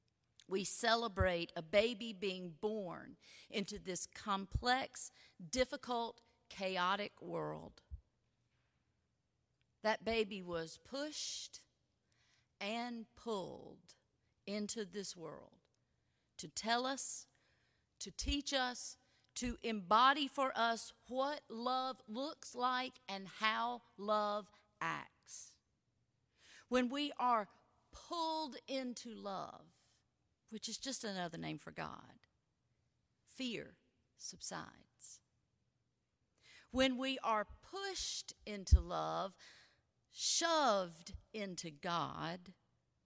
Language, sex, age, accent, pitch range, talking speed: English, female, 40-59, American, 185-255 Hz, 90 wpm